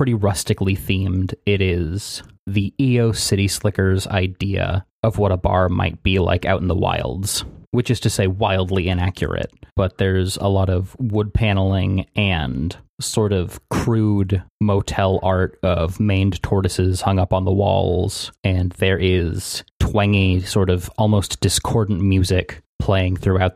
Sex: male